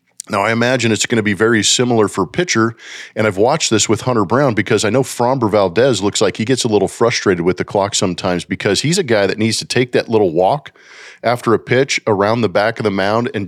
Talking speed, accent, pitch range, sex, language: 245 wpm, American, 100-120 Hz, male, English